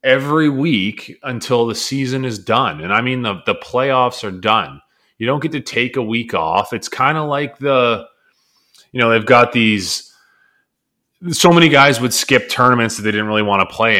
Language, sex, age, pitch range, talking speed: English, male, 30-49, 105-135 Hz, 195 wpm